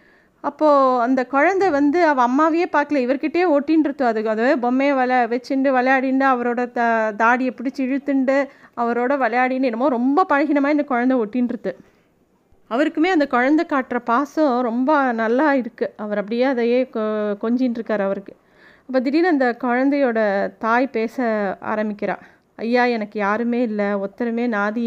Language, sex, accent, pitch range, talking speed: Tamil, female, native, 215-260 Hz, 130 wpm